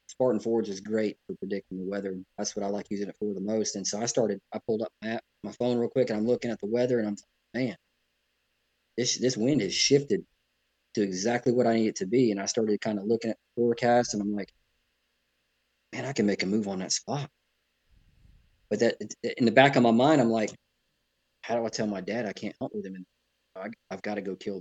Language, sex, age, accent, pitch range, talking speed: English, male, 20-39, American, 100-120 Hz, 250 wpm